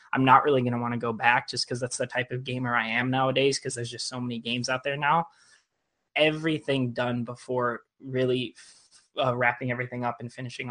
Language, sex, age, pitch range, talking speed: English, male, 20-39, 125-160 Hz, 215 wpm